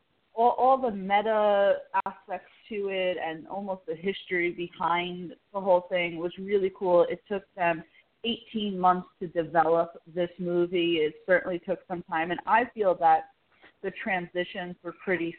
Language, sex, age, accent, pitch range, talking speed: English, female, 20-39, American, 165-190 Hz, 155 wpm